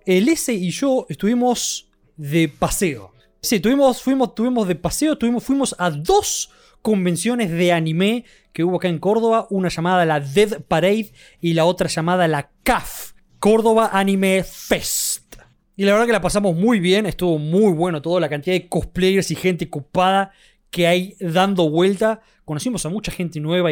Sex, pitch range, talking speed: male, 155-200 Hz, 160 wpm